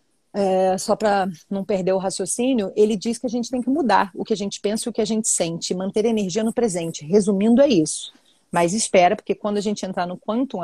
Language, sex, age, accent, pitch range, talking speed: Portuguese, female, 30-49, Brazilian, 185-235 Hz, 245 wpm